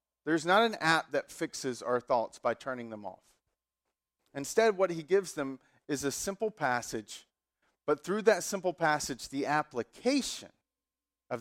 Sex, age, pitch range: male, 40-59, 140-200 Hz